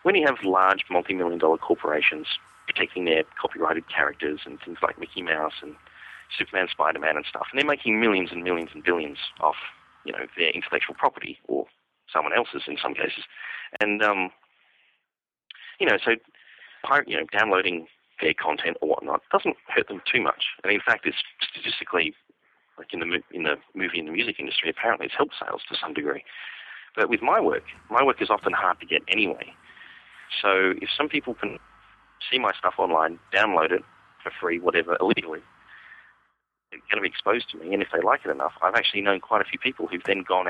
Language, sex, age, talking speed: English, male, 40-59, 200 wpm